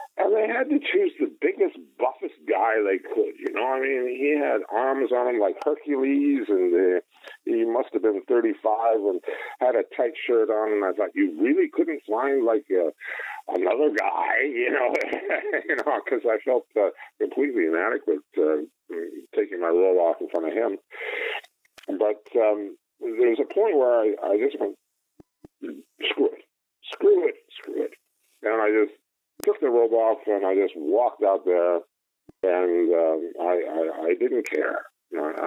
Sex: male